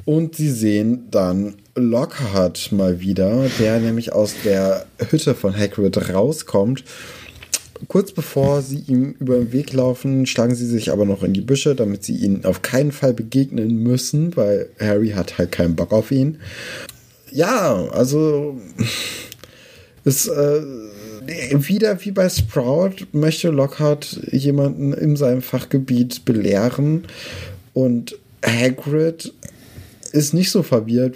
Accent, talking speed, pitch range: German, 130 wpm, 110-140 Hz